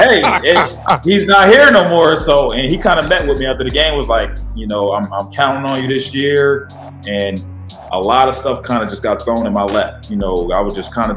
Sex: male